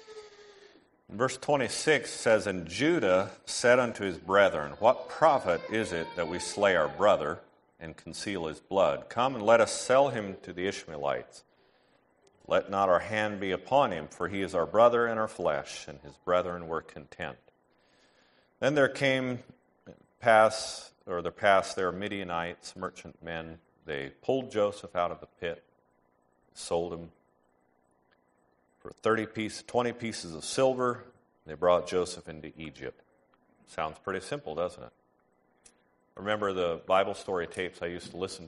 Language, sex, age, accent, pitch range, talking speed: English, male, 50-69, American, 75-110 Hz, 155 wpm